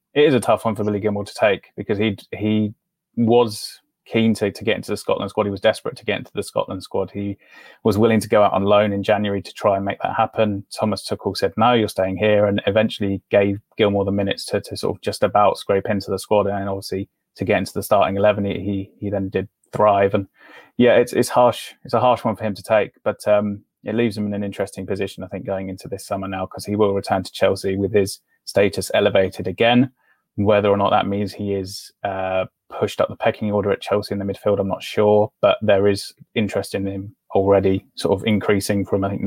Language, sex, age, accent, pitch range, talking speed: English, male, 20-39, British, 95-105 Hz, 240 wpm